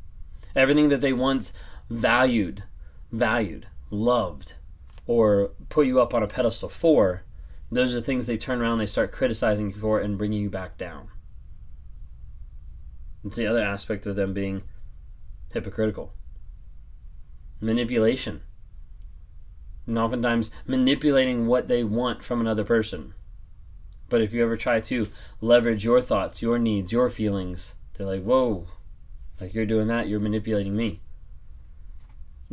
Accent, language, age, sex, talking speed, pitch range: American, English, 20-39, male, 135 wpm, 95-135 Hz